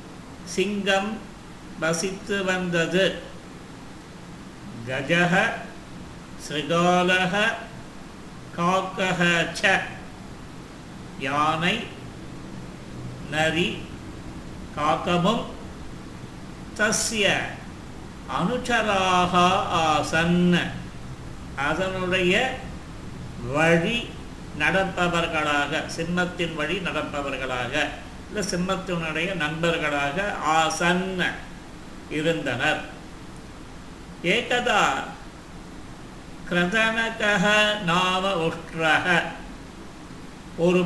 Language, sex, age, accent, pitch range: Tamil, male, 50-69, native, 150-190 Hz